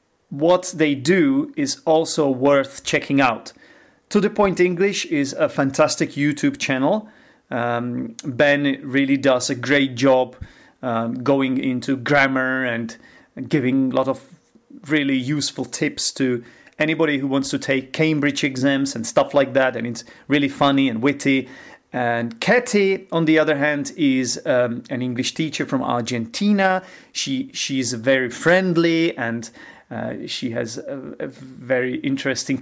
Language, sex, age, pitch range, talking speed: English, male, 30-49, 135-165 Hz, 145 wpm